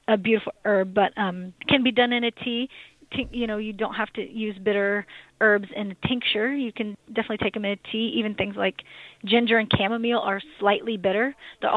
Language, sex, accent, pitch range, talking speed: English, female, American, 195-225 Hz, 215 wpm